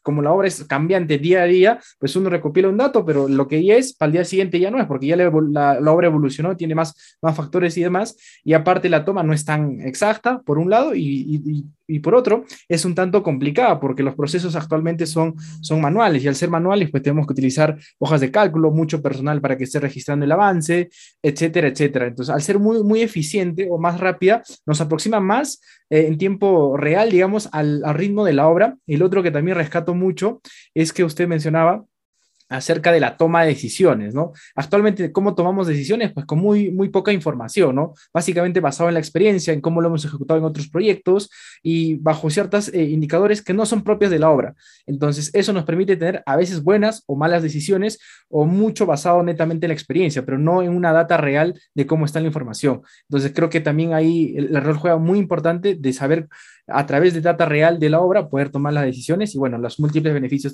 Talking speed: 215 wpm